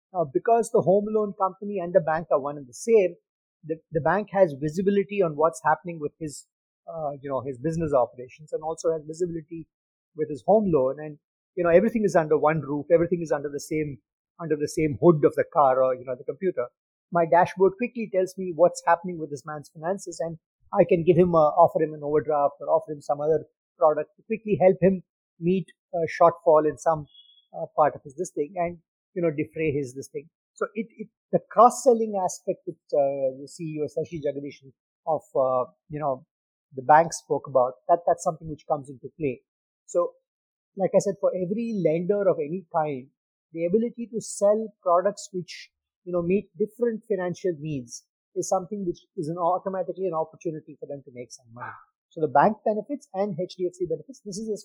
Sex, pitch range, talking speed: male, 150-190 Hz, 205 wpm